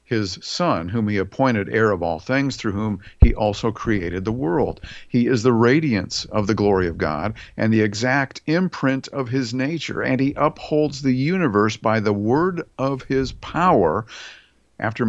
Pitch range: 105-130 Hz